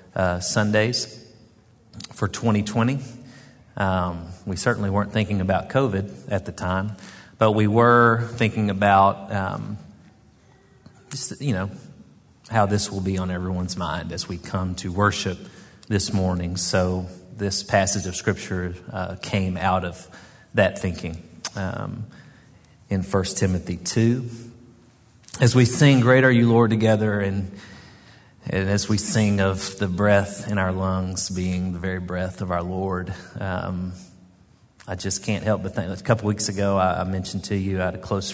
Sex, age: male, 40-59